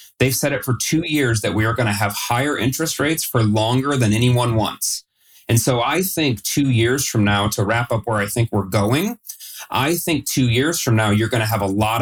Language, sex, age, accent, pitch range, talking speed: English, male, 30-49, American, 110-130 Hz, 240 wpm